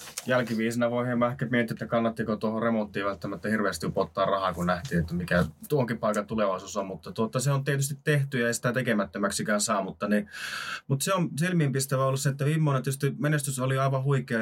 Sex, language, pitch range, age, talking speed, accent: male, Finnish, 105-125 Hz, 20-39, 195 wpm, native